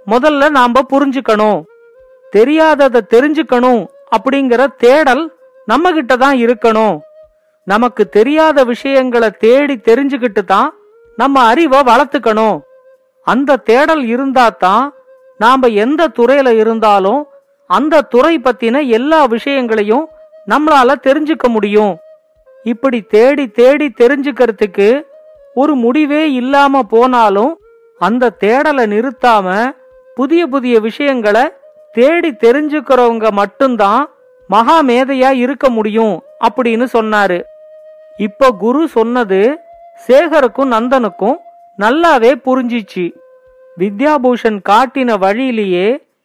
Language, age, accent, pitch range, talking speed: Tamil, 40-59, native, 225-295 Hz, 85 wpm